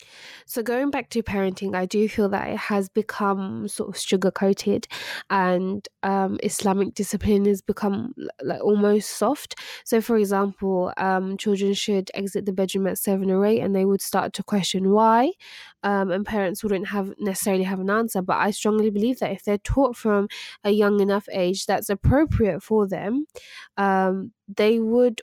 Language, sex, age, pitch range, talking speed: English, female, 20-39, 190-215 Hz, 175 wpm